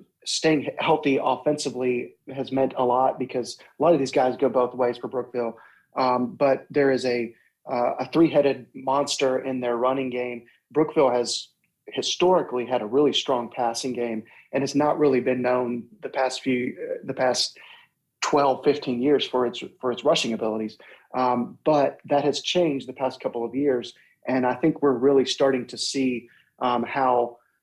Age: 30-49